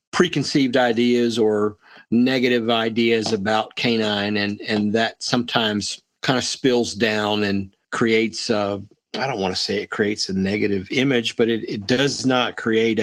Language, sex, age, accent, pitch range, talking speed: English, male, 50-69, American, 110-135 Hz, 155 wpm